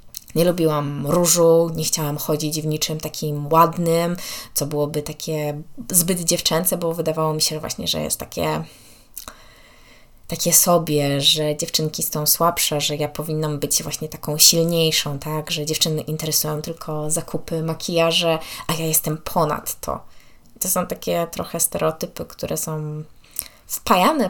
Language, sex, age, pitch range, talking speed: Polish, female, 20-39, 150-175 Hz, 140 wpm